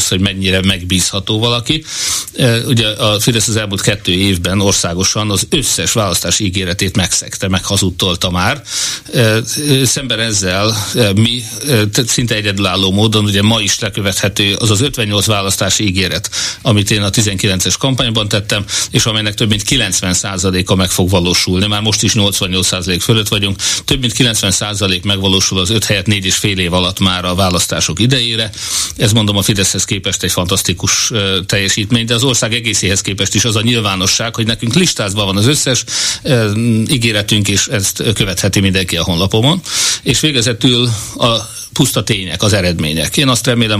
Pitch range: 95-120 Hz